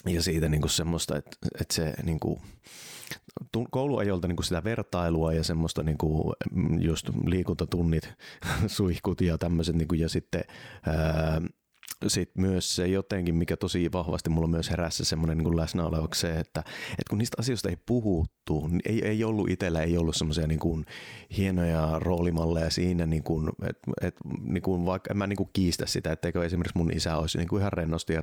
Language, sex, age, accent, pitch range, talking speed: Finnish, male, 30-49, native, 80-95 Hz, 170 wpm